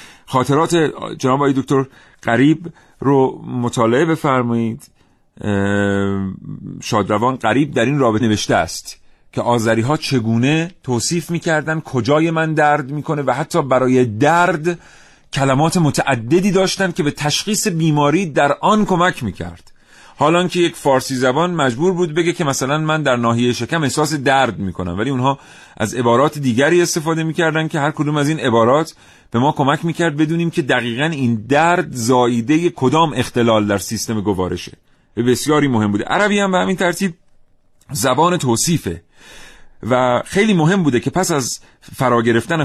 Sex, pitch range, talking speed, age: male, 120-165 Hz, 145 wpm, 40-59